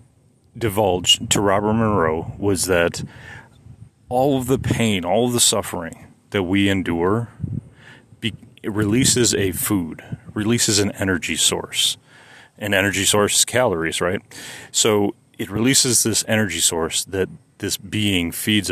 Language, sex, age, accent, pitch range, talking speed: English, male, 30-49, American, 95-120 Hz, 130 wpm